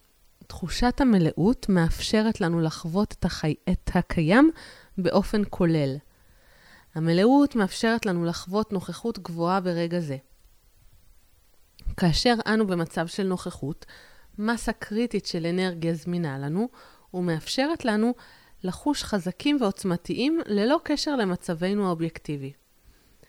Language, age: Hebrew, 30-49